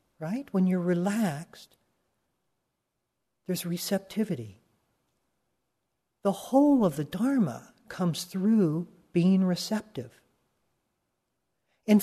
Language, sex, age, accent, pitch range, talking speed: English, male, 50-69, American, 170-225 Hz, 80 wpm